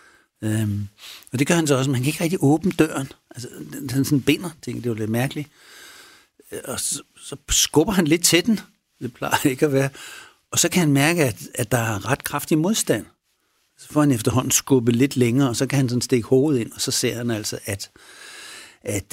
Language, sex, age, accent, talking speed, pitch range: Danish, male, 60-79, native, 230 wpm, 110-140 Hz